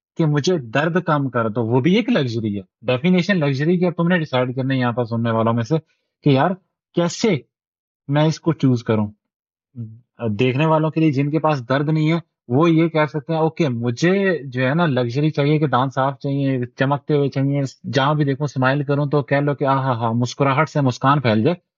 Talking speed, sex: 205 wpm, male